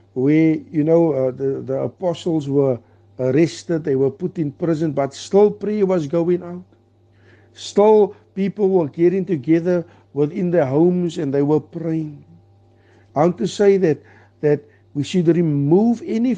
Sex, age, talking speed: male, 60-79, 160 wpm